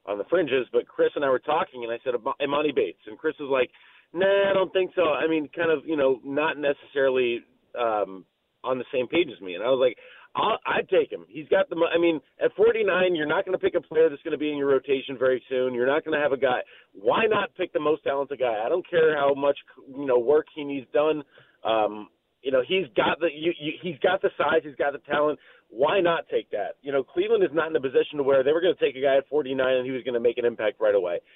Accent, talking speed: American, 265 wpm